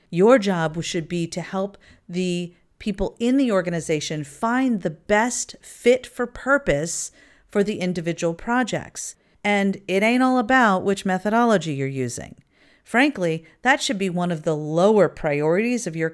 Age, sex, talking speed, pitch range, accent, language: 40-59, female, 150 wpm, 160-215 Hz, American, English